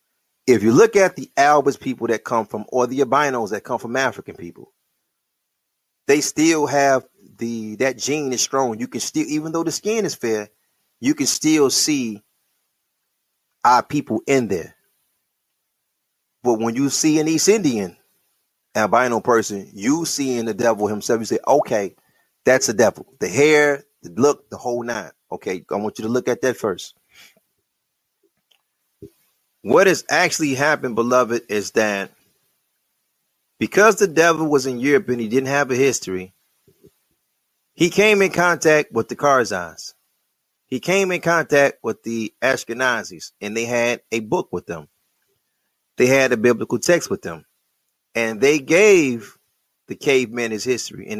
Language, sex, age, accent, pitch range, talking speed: English, male, 30-49, American, 115-155 Hz, 160 wpm